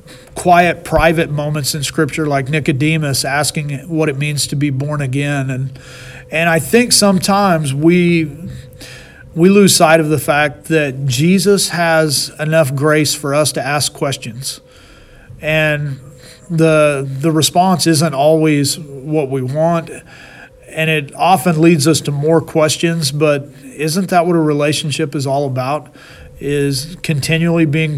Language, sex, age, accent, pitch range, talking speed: English, male, 40-59, American, 140-160 Hz, 140 wpm